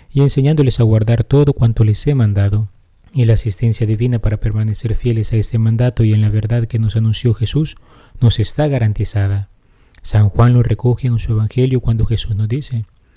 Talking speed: 185 wpm